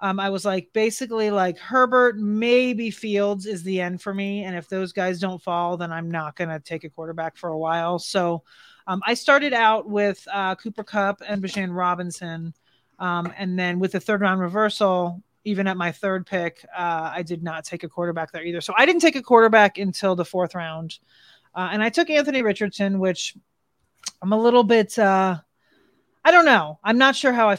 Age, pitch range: 30-49, 175-210 Hz